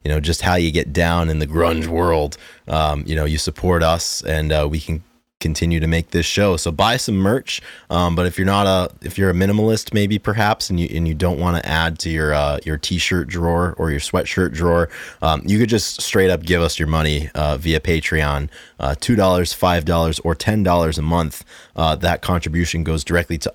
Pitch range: 80-100 Hz